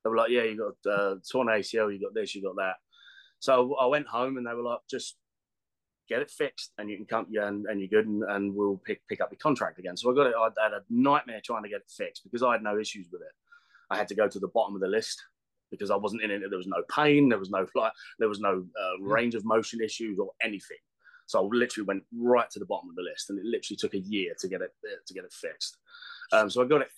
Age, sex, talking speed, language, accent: 20-39, male, 285 wpm, English, British